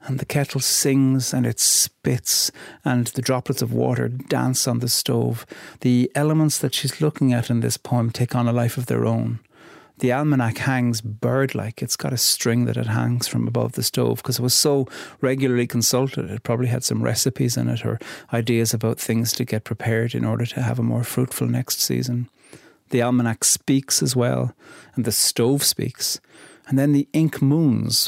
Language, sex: English, male